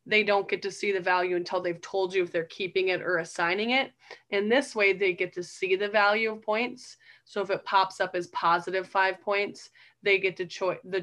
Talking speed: 230 wpm